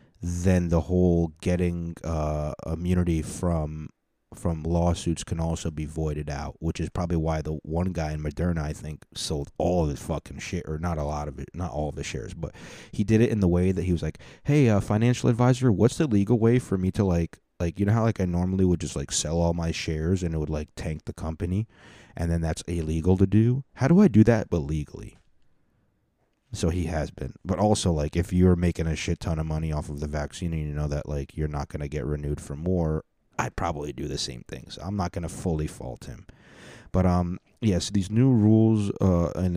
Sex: male